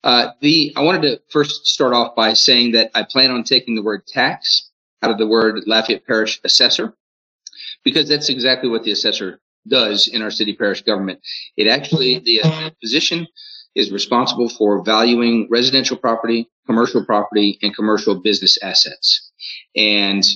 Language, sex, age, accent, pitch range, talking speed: English, male, 40-59, American, 110-135 Hz, 160 wpm